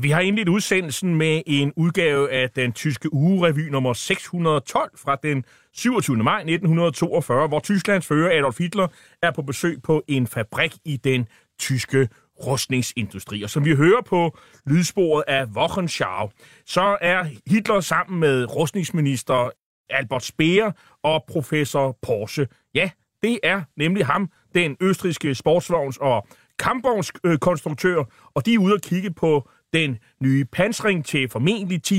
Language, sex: Danish, male